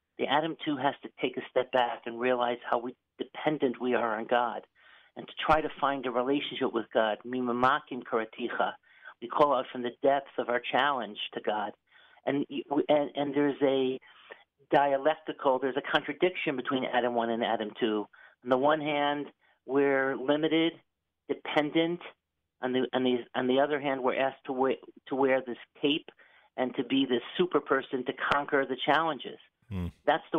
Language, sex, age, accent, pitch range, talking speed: English, male, 50-69, American, 125-145 Hz, 170 wpm